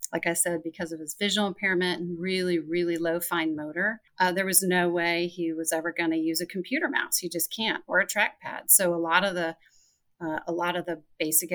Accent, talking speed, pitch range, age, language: American, 235 wpm, 165-190 Hz, 40-59, English